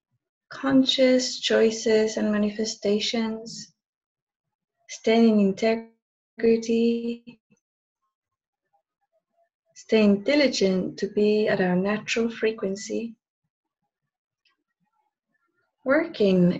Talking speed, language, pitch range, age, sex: 55 wpm, English, 190-270 Hz, 30-49, female